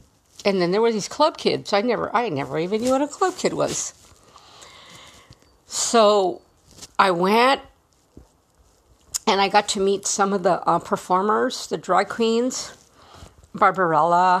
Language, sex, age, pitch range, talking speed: English, female, 50-69, 170-230 Hz, 145 wpm